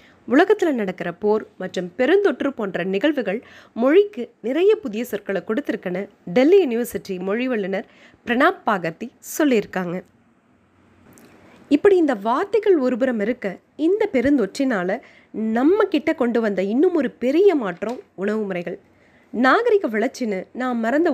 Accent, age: native, 20-39